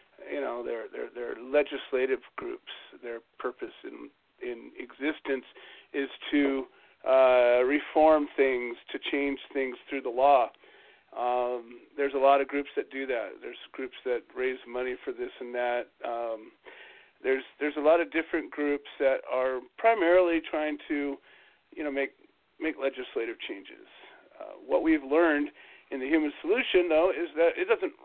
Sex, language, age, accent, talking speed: male, English, 40-59, American, 155 wpm